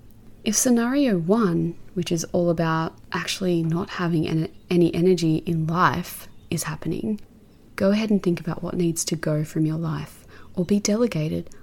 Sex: female